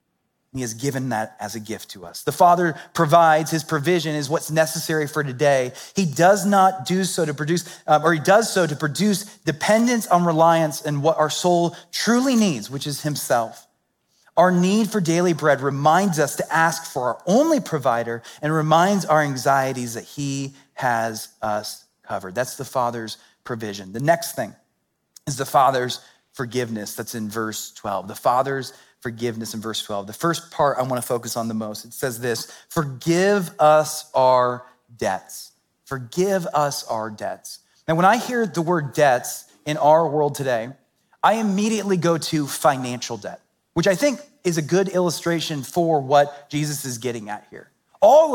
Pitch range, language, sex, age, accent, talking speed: 125-175 Hz, English, male, 30-49, American, 175 wpm